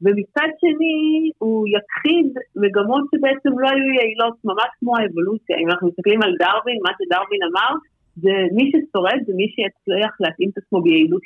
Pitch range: 190-260 Hz